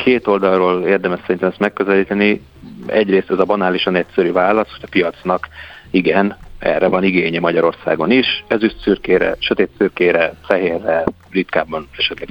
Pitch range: 90-110 Hz